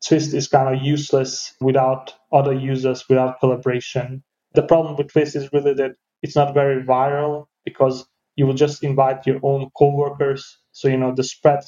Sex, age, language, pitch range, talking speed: male, 30-49, English, 130-140 Hz, 175 wpm